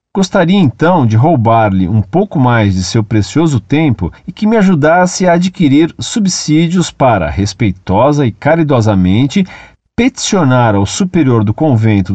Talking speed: 135 wpm